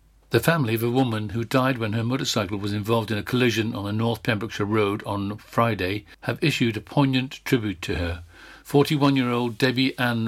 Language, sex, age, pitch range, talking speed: English, male, 50-69, 100-120 Hz, 185 wpm